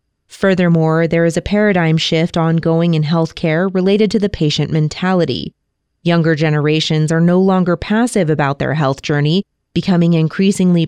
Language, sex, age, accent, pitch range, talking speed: English, female, 20-39, American, 160-200 Hz, 150 wpm